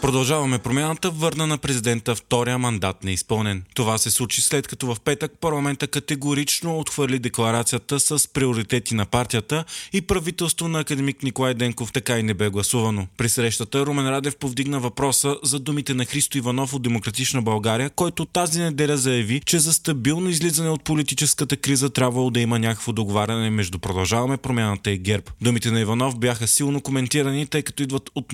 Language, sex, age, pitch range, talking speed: Bulgarian, male, 20-39, 115-140 Hz, 170 wpm